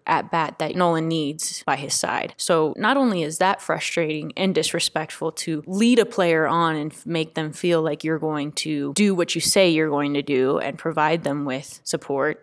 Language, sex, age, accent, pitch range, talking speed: English, female, 20-39, American, 160-210 Hz, 205 wpm